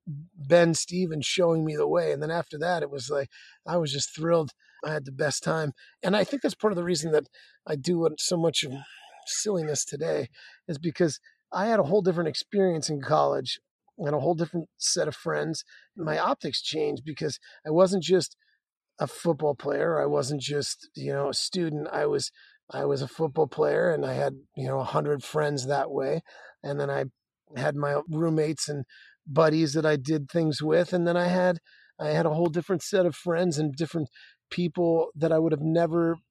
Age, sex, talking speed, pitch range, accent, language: 30-49, male, 205 wpm, 145-175 Hz, American, English